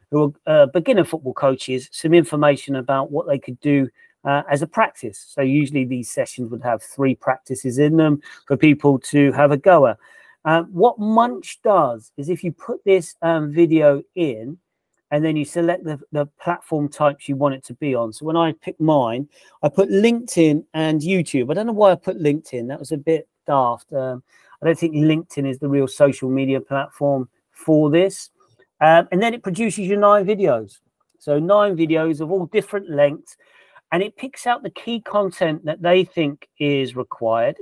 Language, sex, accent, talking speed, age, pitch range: English, male, British, 195 wpm, 40-59, 135-170 Hz